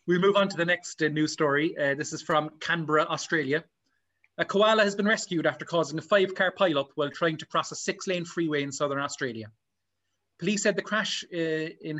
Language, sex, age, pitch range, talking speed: English, male, 30-49, 140-180 Hz, 205 wpm